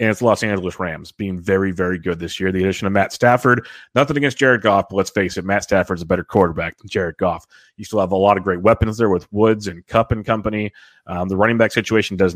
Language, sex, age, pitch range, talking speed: English, male, 30-49, 95-115 Hz, 260 wpm